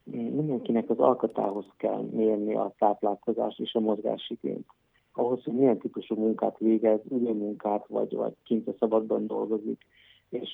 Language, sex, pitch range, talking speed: Hungarian, male, 105-115 Hz, 140 wpm